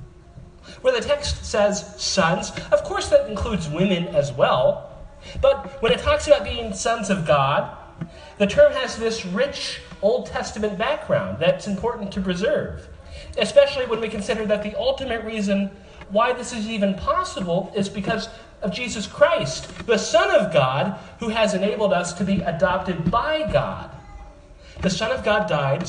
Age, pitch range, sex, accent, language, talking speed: 30-49, 165-215 Hz, male, American, English, 160 wpm